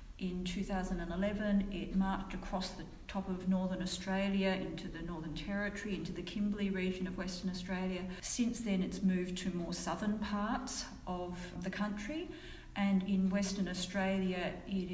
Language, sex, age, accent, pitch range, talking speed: English, female, 40-59, Australian, 180-205 Hz, 150 wpm